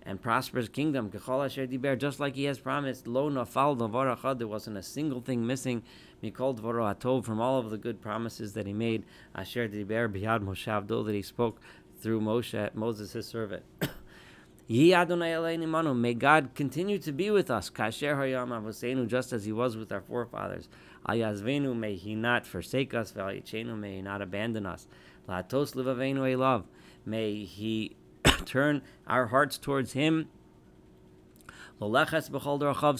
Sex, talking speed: male, 115 wpm